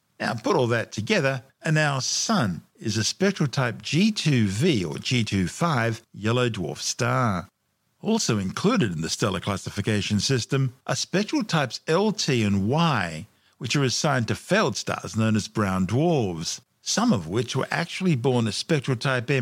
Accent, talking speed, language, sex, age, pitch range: Australian, 155 wpm, English, male, 50-69, 105-145 Hz